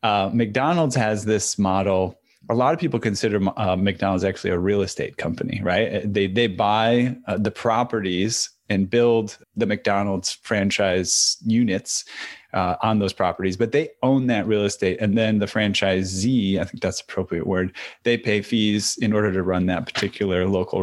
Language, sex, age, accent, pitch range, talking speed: English, male, 30-49, American, 95-115 Hz, 175 wpm